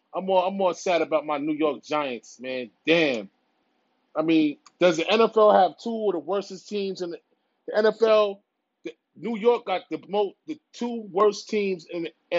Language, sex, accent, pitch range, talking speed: English, male, American, 185-250 Hz, 190 wpm